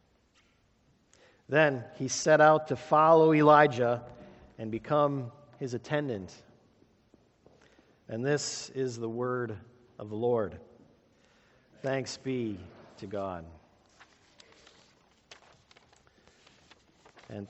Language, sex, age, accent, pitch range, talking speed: English, male, 50-69, American, 125-175 Hz, 80 wpm